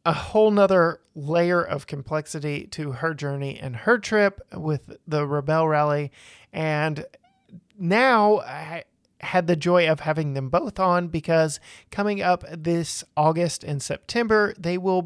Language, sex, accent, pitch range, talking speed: English, male, American, 150-180 Hz, 145 wpm